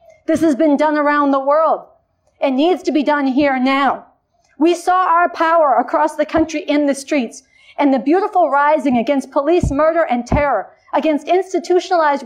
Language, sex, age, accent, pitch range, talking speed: English, female, 40-59, American, 265-335 Hz, 170 wpm